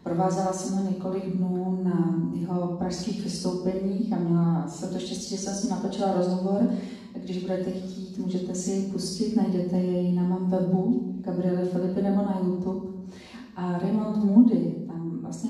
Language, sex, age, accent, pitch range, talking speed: Czech, female, 30-49, native, 185-220 Hz, 150 wpm